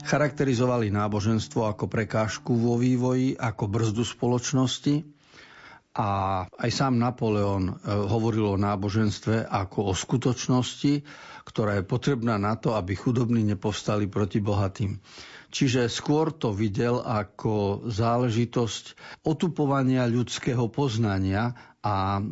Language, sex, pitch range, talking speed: Slovak, male, 105-130 Hz, 105 wpm